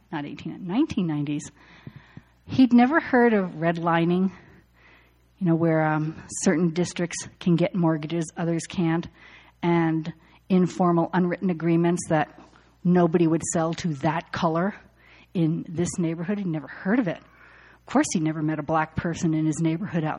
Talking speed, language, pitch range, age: 145 wpm, English, 160-210 Hz, 50-69